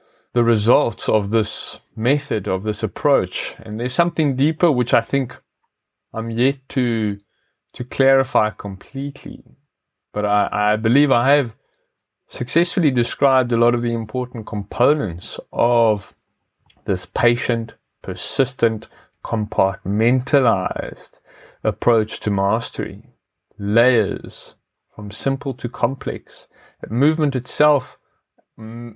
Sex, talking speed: male, 105 wpm